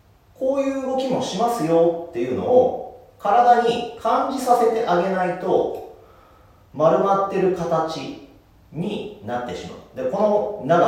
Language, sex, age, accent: Japanese, male, 40-59, native